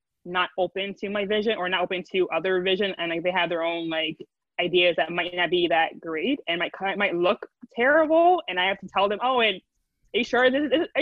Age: 20-39